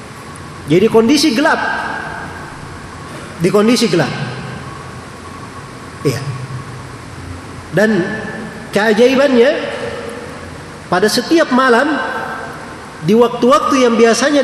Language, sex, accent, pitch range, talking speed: Indonesian, male, native, 155-240 Hz, 65 wpm